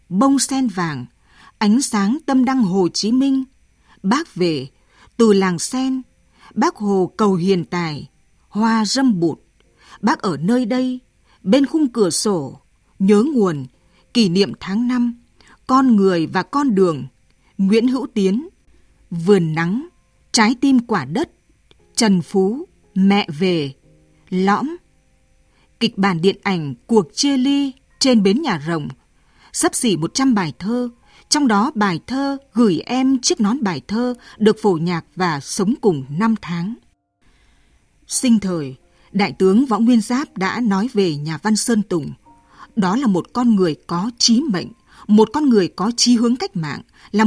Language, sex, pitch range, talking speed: Vietnamese, female, 185-250 Hz, 155 wpm